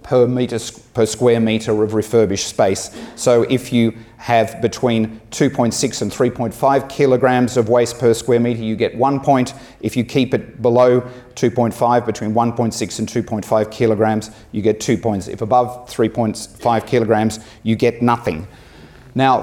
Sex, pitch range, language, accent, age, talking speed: male, 110-125 Hz, English, Australian, 30-49, 150 wpm